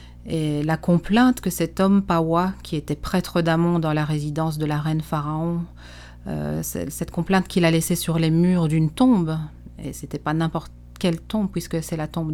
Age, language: 40-59, French